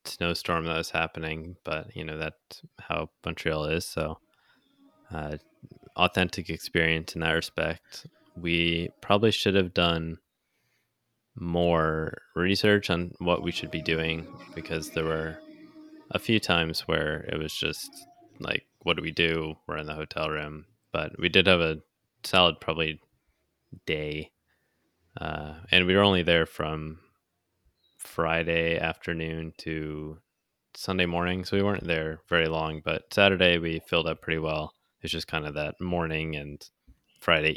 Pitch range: 80-90 Hz